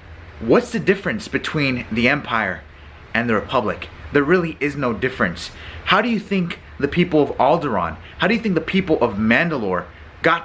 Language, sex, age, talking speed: English, male, 30-49, 180 wpm